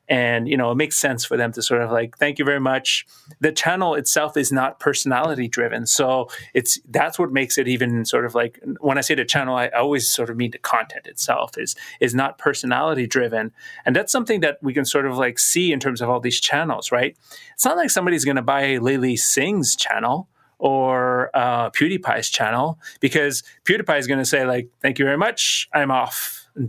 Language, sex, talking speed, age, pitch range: English, male, 215 wpm, 30-49, 125-150 Hz